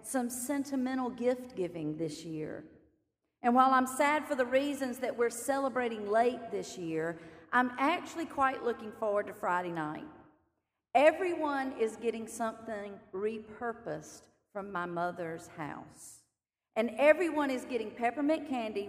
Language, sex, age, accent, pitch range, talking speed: English, female, 40-59, American, 205-270 Hz, 135 wpm